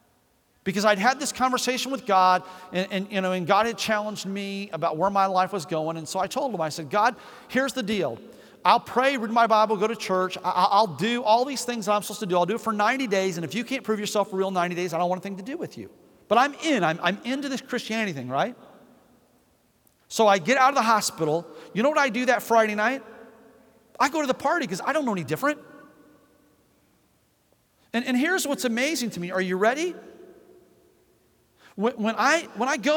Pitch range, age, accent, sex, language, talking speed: 200-280 Hz, 40-59, American, male, English, 230 wpm